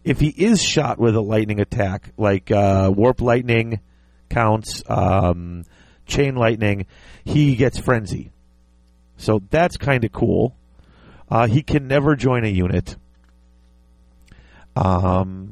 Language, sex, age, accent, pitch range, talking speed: English, male, 40-59, American, 95-140 Hz, 125 wpm